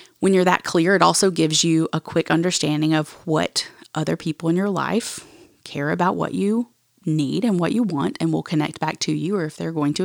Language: English